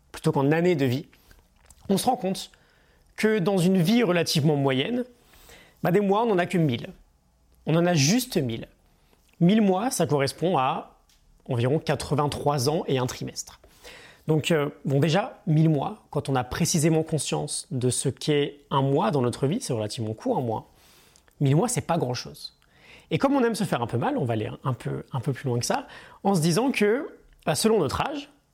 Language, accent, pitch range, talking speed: French, French, 135-190 Hz, 200 wpm